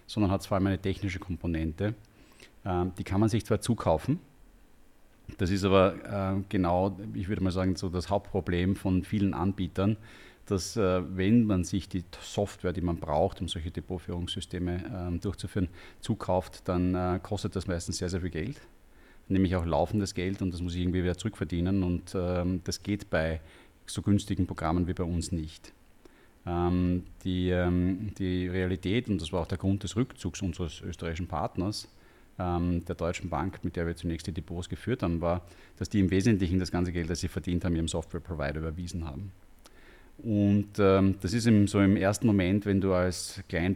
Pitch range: 90-100 Hz